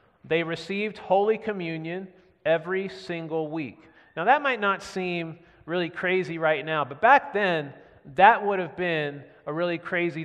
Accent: American